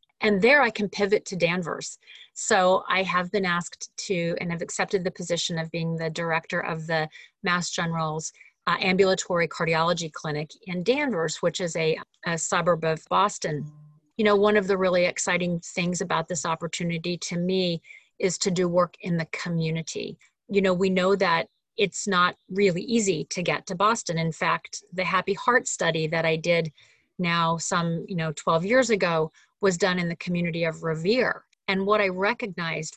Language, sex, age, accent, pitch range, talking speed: English, female, 30-49, American, 165-195 Hz, 180 wpm